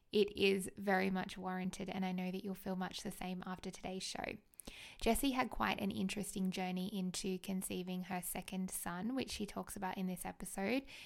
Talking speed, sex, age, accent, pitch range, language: 190 wpm, female, 20-39, Australian, 190-215 Hz, English